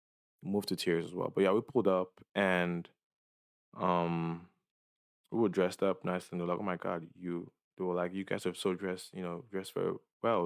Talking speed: 210 wpm